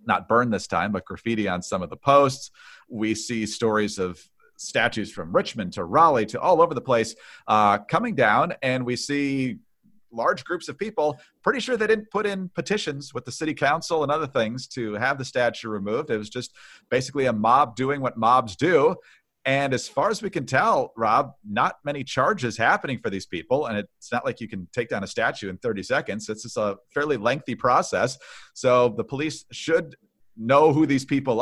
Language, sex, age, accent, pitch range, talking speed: English, male, 40-59, American, 110-150 Hz, 200 wpm